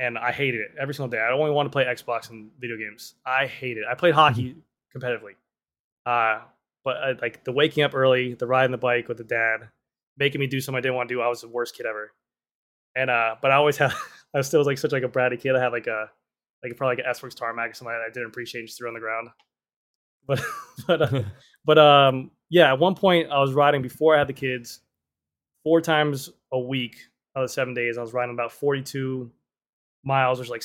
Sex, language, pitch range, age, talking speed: male, English, 120-140 Hz, 20-39, 250 wpm